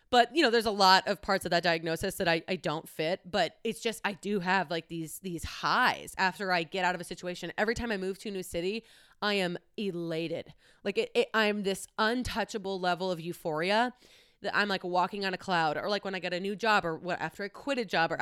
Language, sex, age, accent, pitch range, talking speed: English, female, 20-39, American, 175-215 Hz, 245 wpm